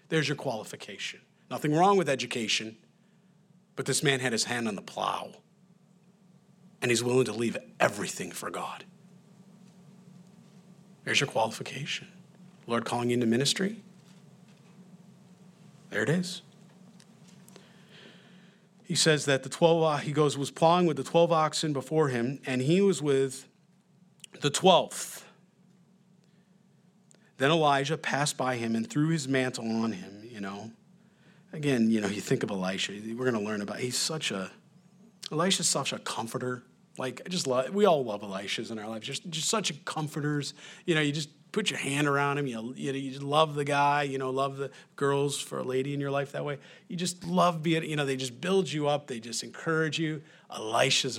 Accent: American